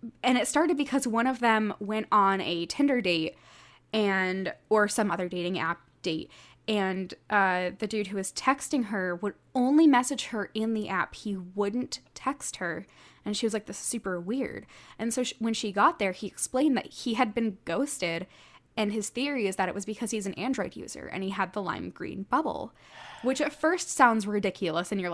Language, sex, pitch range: English, female, 190-270 Hz